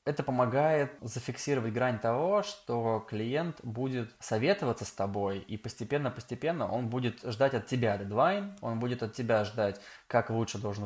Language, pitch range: Russian, 105-125 Hz